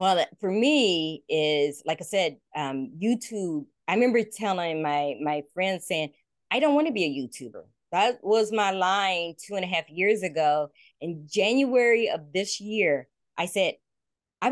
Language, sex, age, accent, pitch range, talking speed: English, female, 20-39, American, 155-210 Hz, 170 wpm